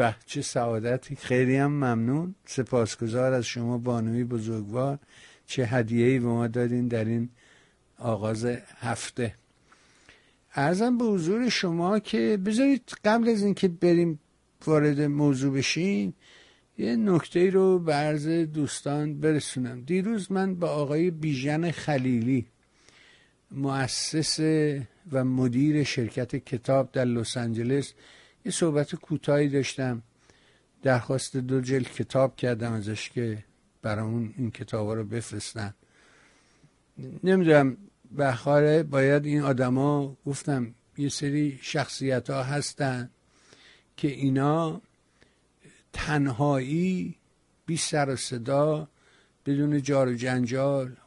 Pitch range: 125-155 Hz